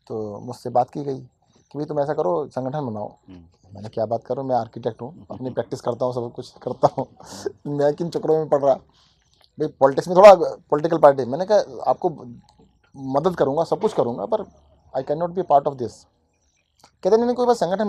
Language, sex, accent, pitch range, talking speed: Hindi, male, native, 115-150 Hz, 205 wpm